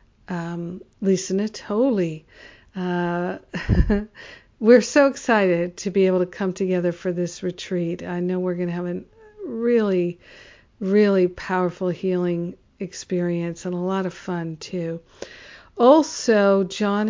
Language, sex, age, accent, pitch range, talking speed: English, female, 50-69, American, 175-200 Hz, 125 wpm